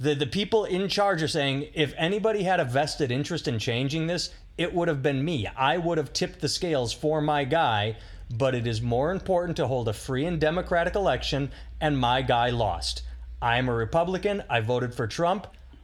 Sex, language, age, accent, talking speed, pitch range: male, English, 30-49, American, 200 wpm, 120-160 Hz